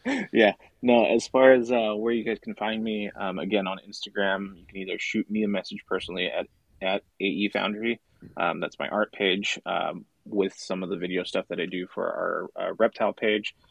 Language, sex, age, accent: English, male, 20-39, American